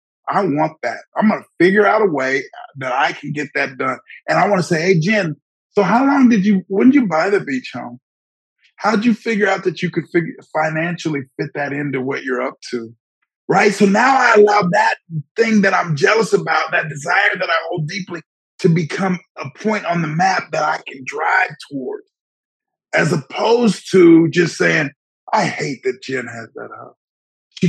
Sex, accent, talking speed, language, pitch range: male, American, 205 wpm, English, 155-215 Hz